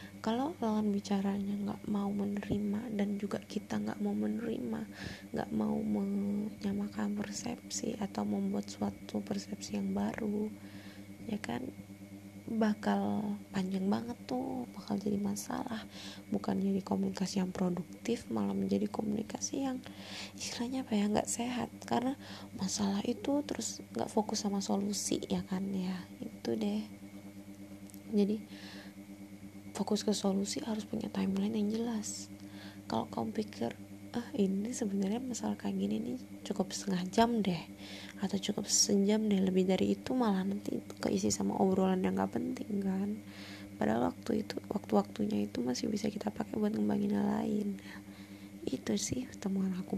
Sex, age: female, 20-39